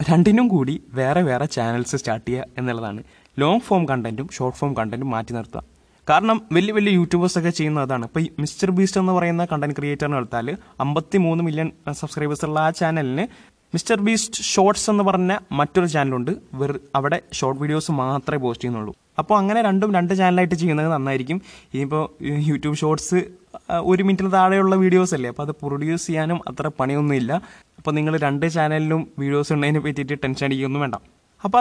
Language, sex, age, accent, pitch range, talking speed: Malayalam, male, 20-39, native, 140-180 Hz, 160 wpm